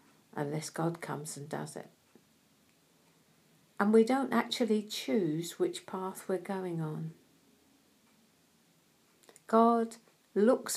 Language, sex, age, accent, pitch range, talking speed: English, female, 50-69, British, 170-205 Hz, 100 wpm